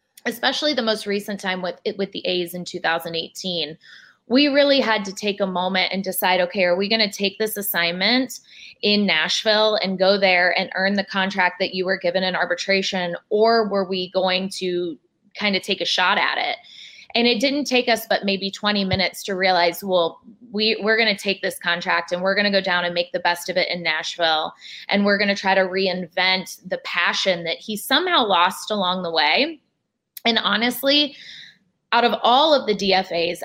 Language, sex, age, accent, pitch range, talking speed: English, female, 20-39, American, 180-210 Hz, 205 wpm